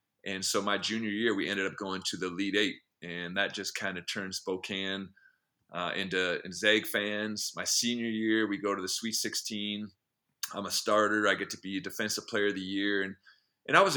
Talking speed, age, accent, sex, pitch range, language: 220 wpm, 30-49, American, male, 95-110 Hz, English